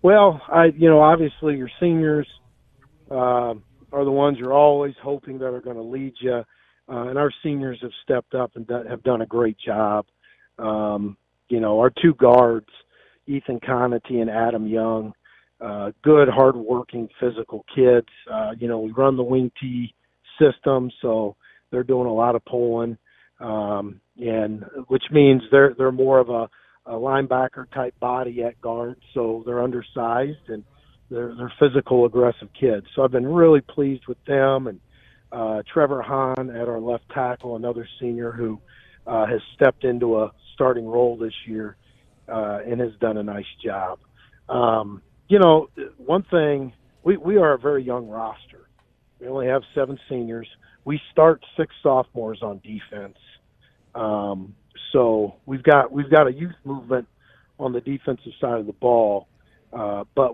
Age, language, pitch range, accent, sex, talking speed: 40-59, English, 115-135 Hz, American, male, 165 wpm